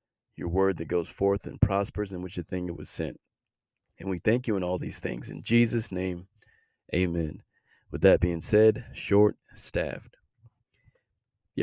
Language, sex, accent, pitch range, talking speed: English, male, American, 90-105 Hz, 165 wpm